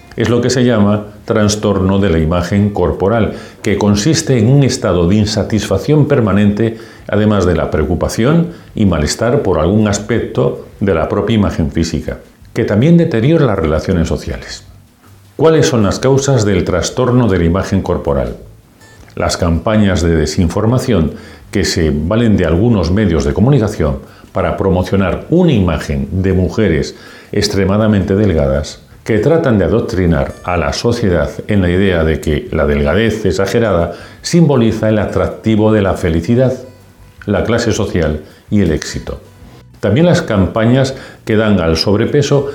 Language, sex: Spanish, male